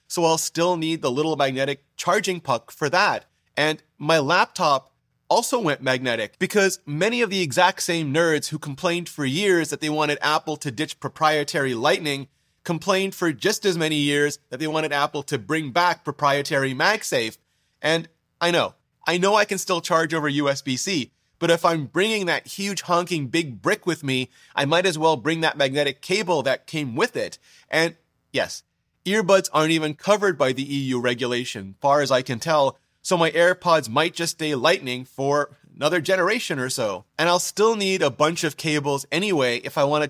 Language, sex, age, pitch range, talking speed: English, male, 30-49, 140-175 Hz, 185 wpm